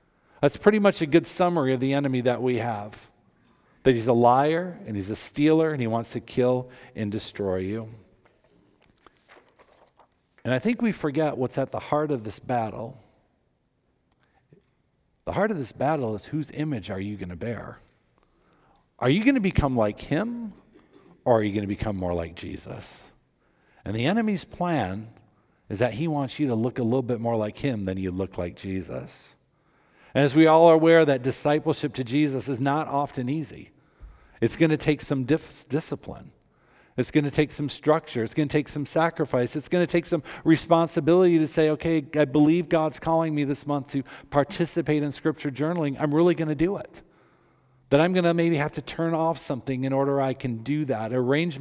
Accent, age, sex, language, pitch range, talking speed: American, 50-69, male, English, 120-160 Hz, 195 wpm